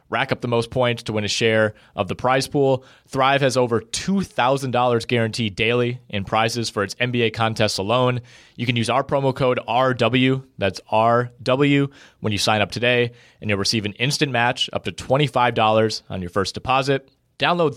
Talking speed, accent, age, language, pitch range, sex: 180 wpm, American, 30-49, English, 105-125 Hz, male